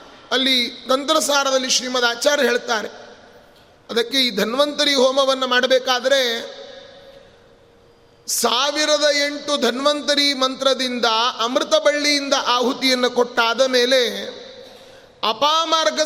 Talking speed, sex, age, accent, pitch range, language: 75 wpm, male, 30-49, native, 245-295 Hz, Kannada